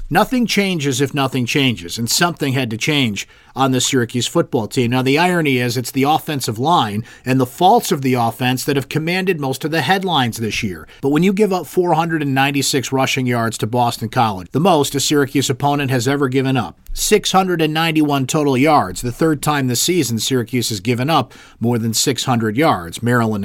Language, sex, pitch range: English, male, 120-155 Hz